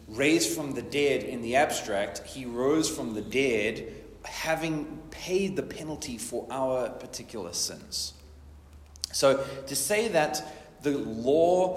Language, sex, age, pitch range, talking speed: English, male, 30-49, 105-135 Hz, 135 wpm